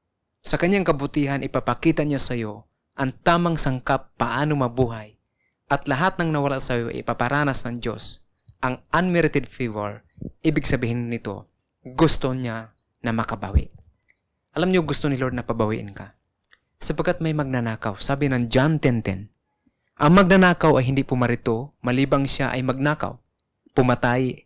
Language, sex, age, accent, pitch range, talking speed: Filipino, male, 20-39, native, 115-145 Hz, 135 wpm